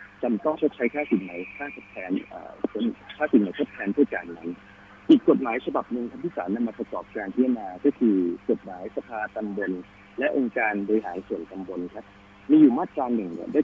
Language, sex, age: Thai, male, 30-49